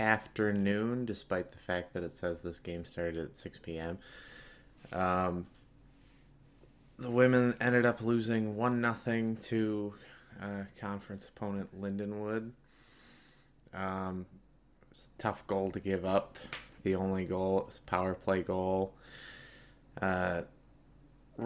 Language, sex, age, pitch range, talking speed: English, male, 20-39, 95-125 Hz, 120 wpm